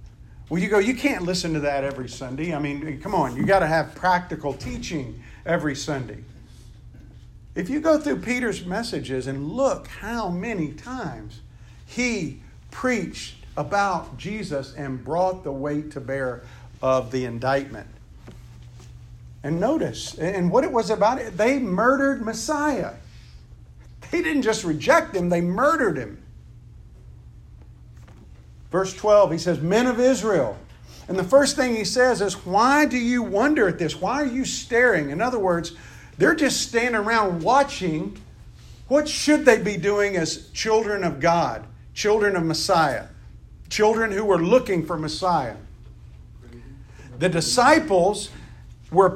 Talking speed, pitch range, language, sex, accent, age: 145 wpm, 150-245 Hz, English, male, American, 50-69